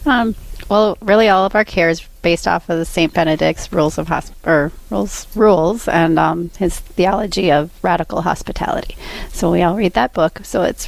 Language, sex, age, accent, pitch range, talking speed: English, female, 30-49, American, 170-200 Hz, 195 wpm